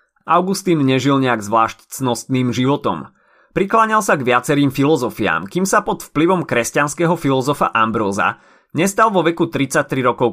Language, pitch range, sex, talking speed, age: Slovak, 120-165 Hz, male, 135 wpm, 30-49